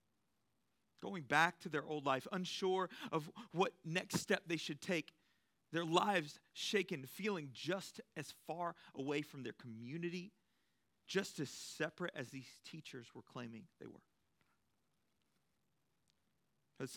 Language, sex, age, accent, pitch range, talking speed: English, male, 40-59, American, 125-165 Hz, 125 wpm